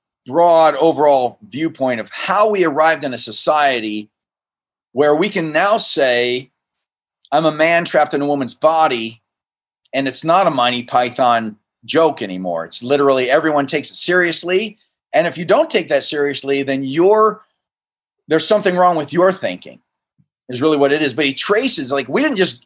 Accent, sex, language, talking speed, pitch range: American, male, English, 170 wpm, 130-170 Hz